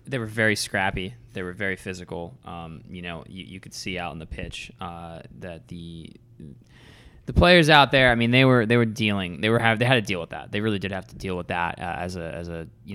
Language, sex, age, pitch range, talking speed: English, male, 20-39, 90-130 Hz, 260 wpm